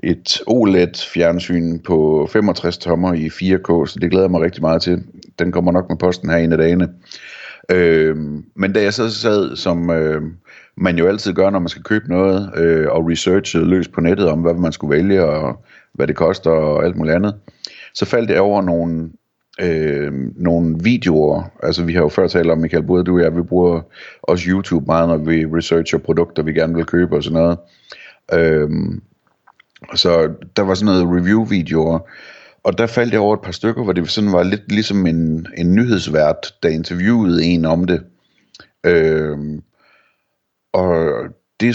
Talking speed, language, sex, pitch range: 185 wpm, Danish, male, 80-95 Hz